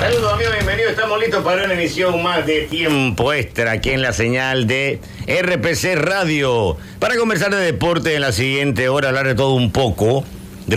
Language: English